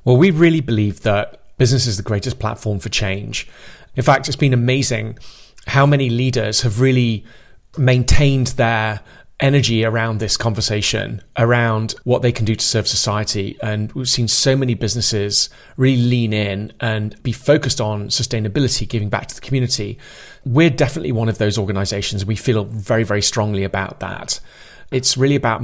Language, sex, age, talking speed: English, male, 30-49, 165 wpm